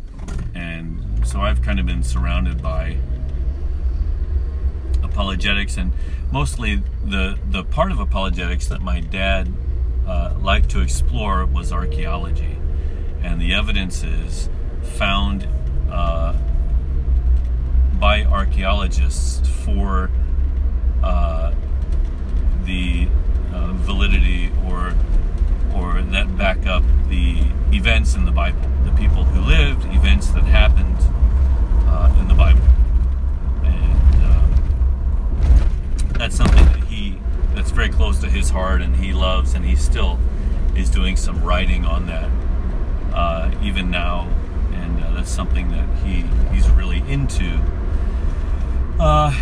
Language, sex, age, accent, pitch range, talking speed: English, male, 40-59, American, 65-75 Hz, 115 wpm